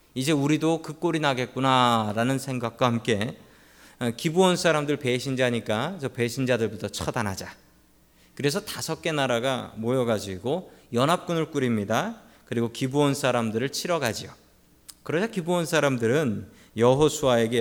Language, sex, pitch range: Korean, male, 115-150 Hz